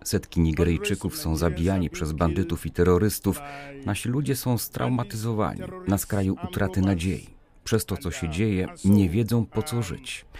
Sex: male